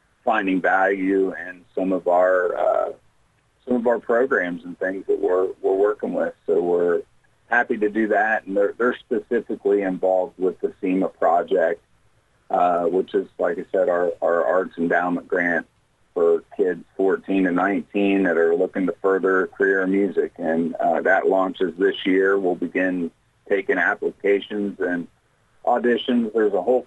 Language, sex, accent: English, male, American